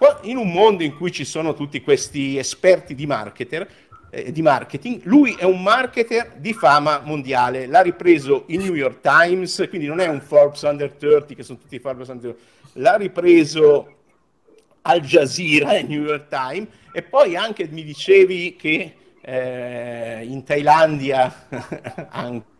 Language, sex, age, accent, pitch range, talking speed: Italian, male, 50-69, native, 125-170 Hz, 155 wpm